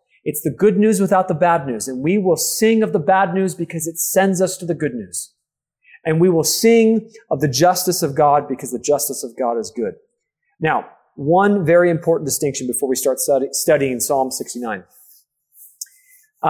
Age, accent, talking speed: 30-49, American, 190 wpm